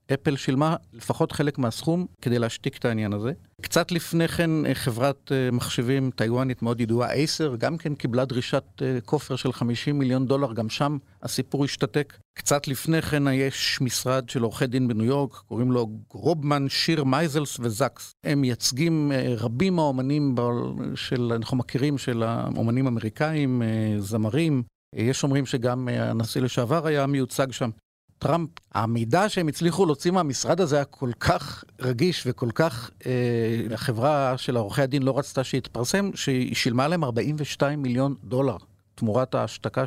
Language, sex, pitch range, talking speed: Hebrew, male, 120-150 Hz, 145 wpm